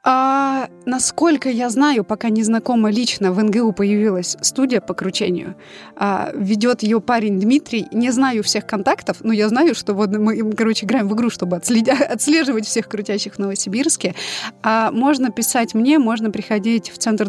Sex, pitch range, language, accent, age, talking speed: female, 195-235 Hz, Russian, native, 20-39, 160 wpm